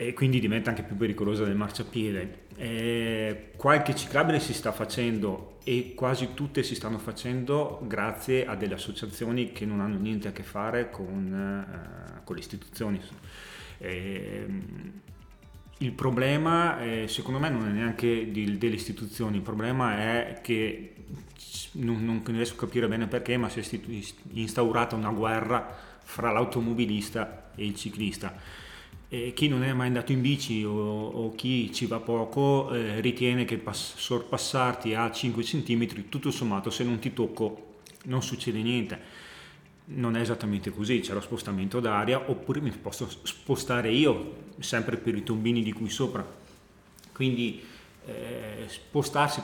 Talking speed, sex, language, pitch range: 150 wpm, male, Italian, 110-125 Hz